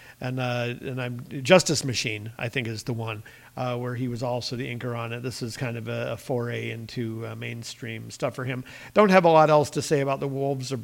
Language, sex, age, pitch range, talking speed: English, male, 50-69, 125-145 Hz, 245 wpm